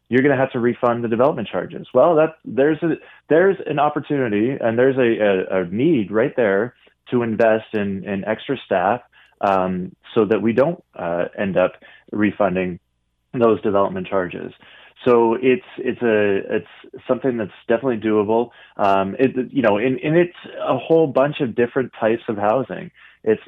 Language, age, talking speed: English, 20-39, 170 wpm